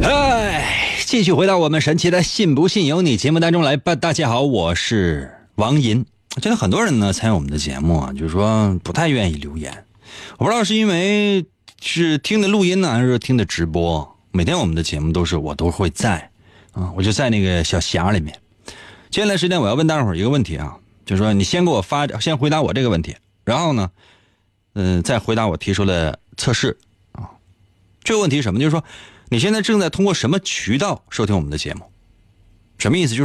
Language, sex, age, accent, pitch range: Chinese, male, 30-49, native, 95-155 Hz